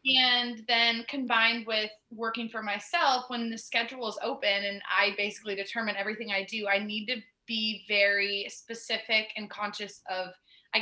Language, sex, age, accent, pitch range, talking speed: English, female, 20-39, American, 195-230 Hz, 160 wpm